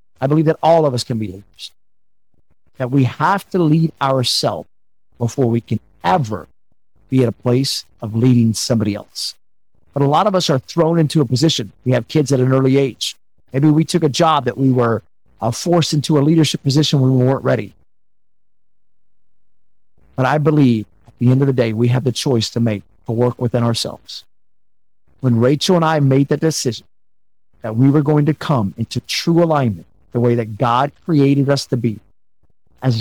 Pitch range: 105-140 Hz